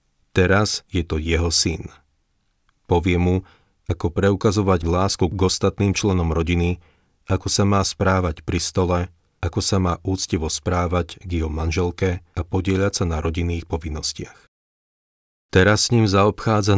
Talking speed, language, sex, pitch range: 135 wpm, Slovak, male, 85-100 Hz